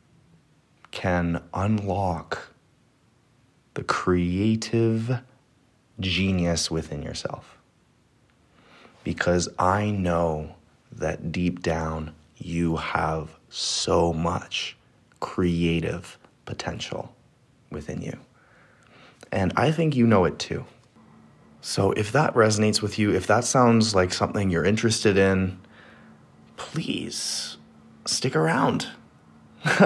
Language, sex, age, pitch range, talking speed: English, male, 30-49, 85-105 Hz, 90 wpm